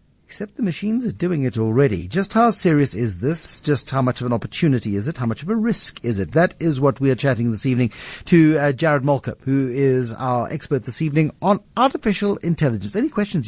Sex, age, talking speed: male, 60-79, 225 wpm